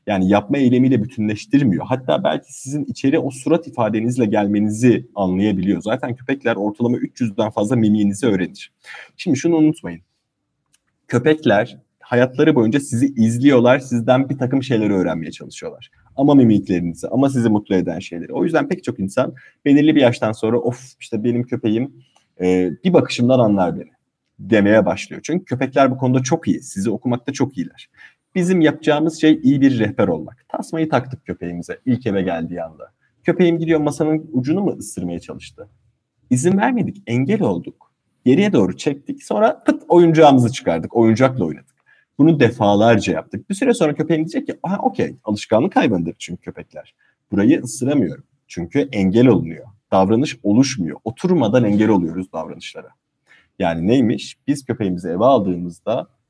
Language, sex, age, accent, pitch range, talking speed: Turkish, male, 30-49, native, 105-150 Hz, 145 wpm